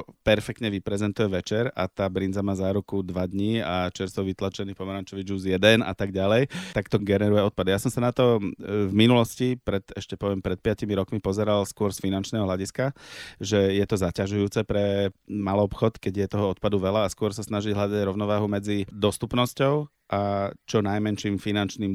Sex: male